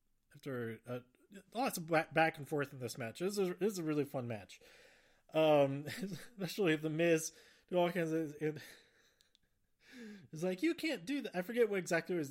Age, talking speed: 20-39, 170 wpm